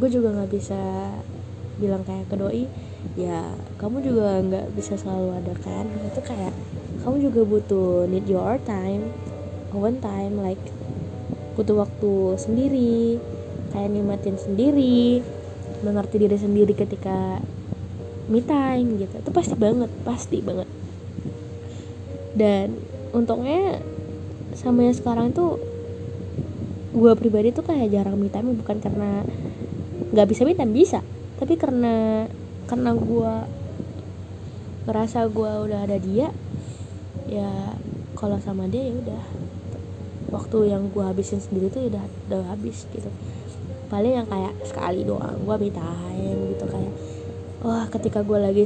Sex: female